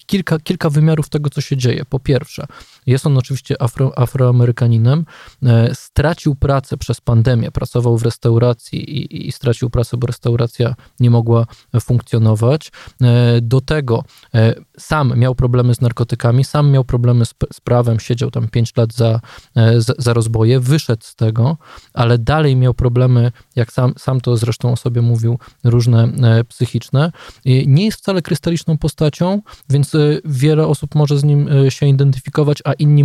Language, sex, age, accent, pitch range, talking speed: Polish, male, 20-39, native, 120-140 Hz, 165 wpm